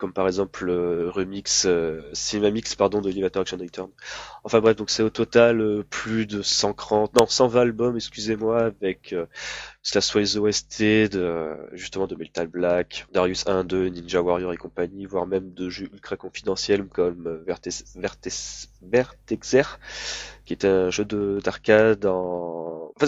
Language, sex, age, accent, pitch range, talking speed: French, male, 20-39, French, 90-110 Hz, 165 wpm